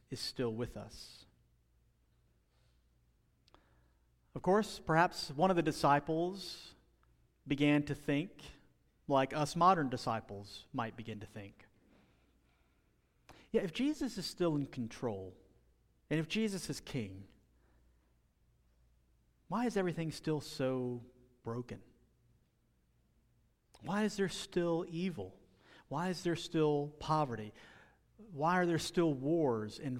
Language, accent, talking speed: English, American, 110 wpm